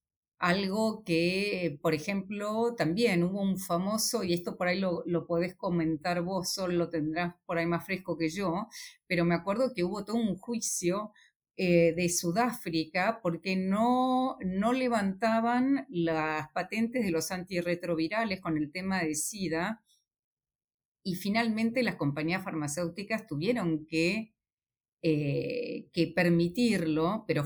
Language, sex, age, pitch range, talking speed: Spanish, female, 40-59, 170-230 Hz, 135 wpm